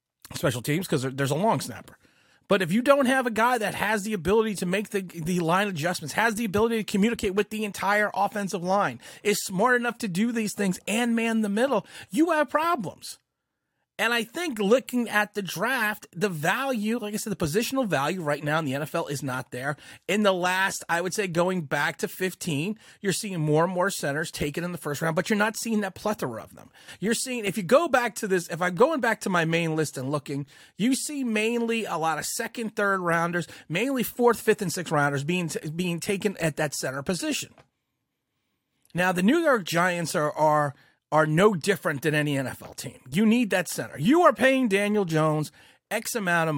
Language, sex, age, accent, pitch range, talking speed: English, male, 30-49, American, 160-225 Hz, 215 wpm